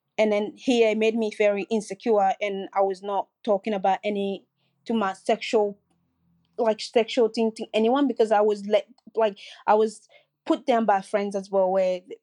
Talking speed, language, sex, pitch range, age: 175 wpm, English, female, 195-230 Hz, 20-39